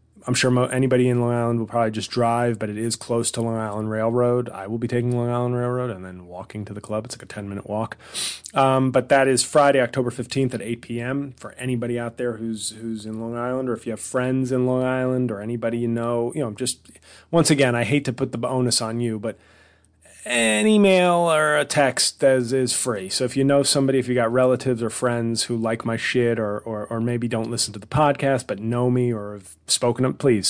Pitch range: 110-130 Hz